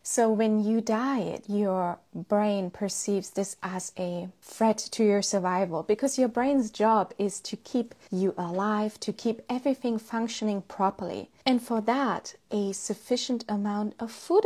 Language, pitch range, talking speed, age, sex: English, 195-240 Hz, 150 wpm, 20-39, female